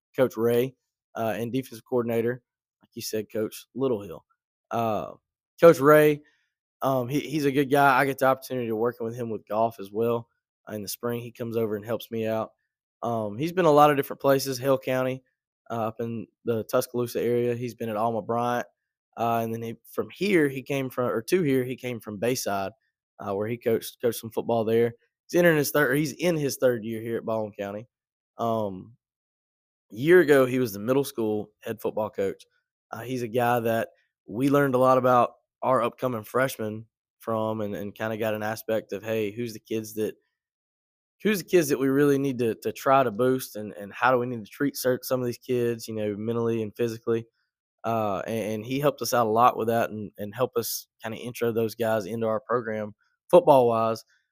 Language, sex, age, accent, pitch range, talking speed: English, male, 20-39, American, 110-130 Hz, 215 wpm